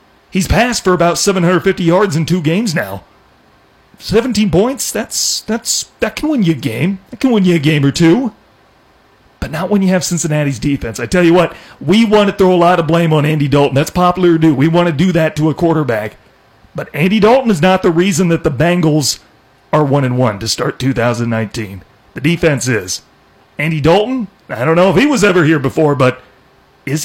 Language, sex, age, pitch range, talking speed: English, male, 40-59, 135-185 Hz, 210 wpm